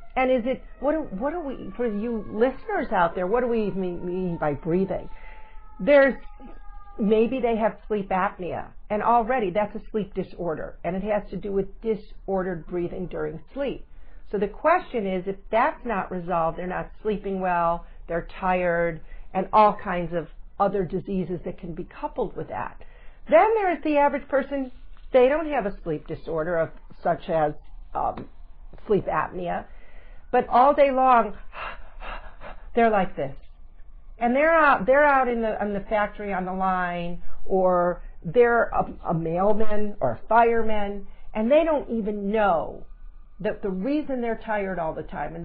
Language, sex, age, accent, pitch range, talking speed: English, female, 50-69, American, 185-260 Hz, 170 wpm